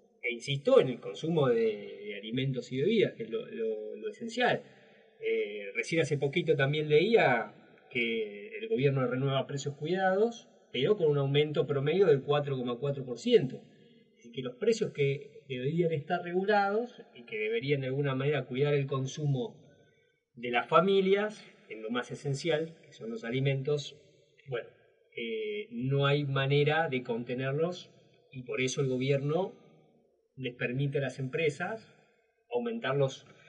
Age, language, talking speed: 20-39, Spanish, 140 wpm